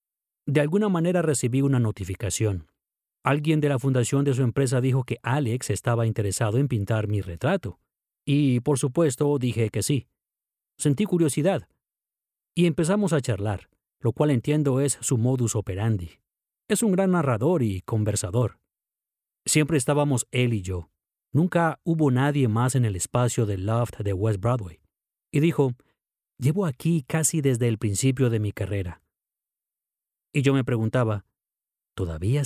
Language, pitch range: English, 110-150 Hz